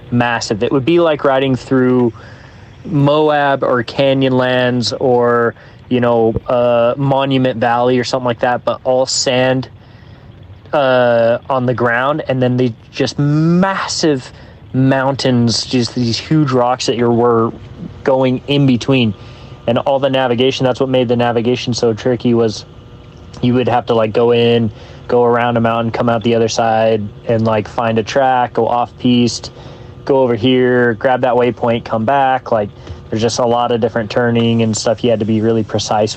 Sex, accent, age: male, American, 30-49